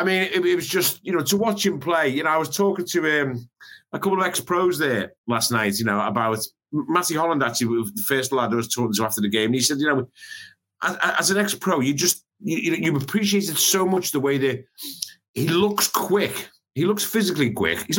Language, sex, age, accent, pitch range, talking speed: English, male, 50-69, British, 120-180 Hz, 230 wpm